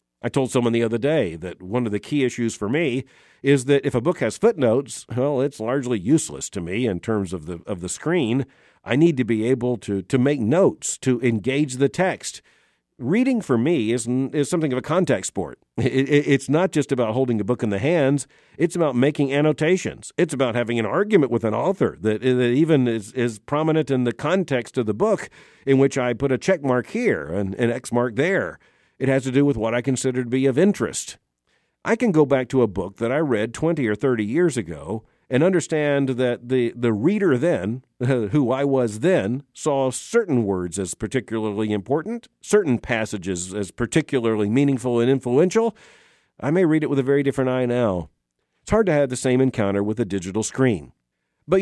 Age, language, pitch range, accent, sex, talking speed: 50-69, English, 115-145 Hz, American, male, 210 wpm